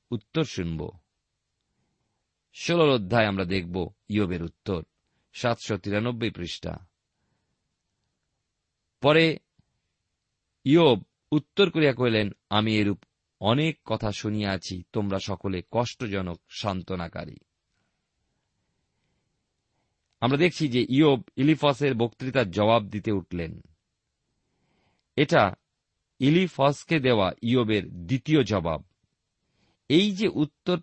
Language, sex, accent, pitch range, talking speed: Bengali, male, native, 105-145 Hz, 85 wpm